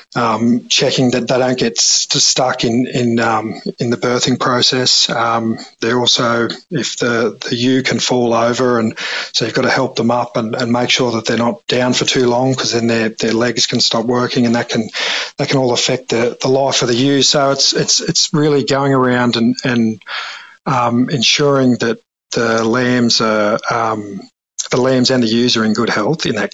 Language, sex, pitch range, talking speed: English, male, 115-130 Hz, 210 wpm